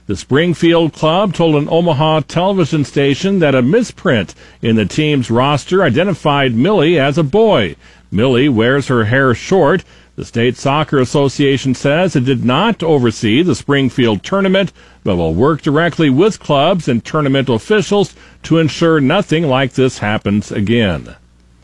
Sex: male